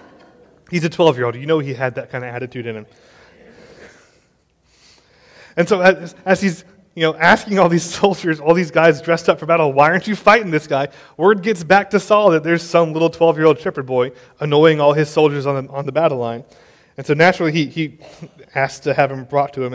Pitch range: 140-175 Hz